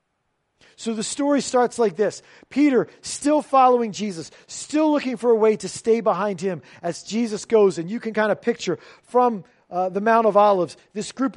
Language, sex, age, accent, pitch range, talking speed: English, male, 40-59, American, 185-235 Hz, 190 wpm